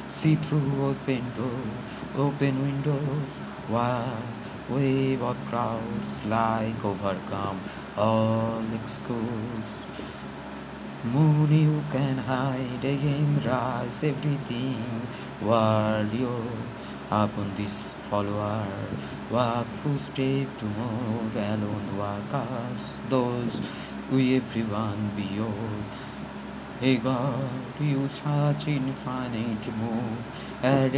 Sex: male